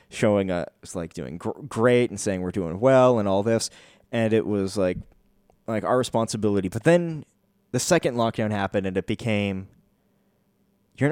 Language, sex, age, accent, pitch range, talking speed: English, male, 20-39, American, 95-120 Hz, 160 wpm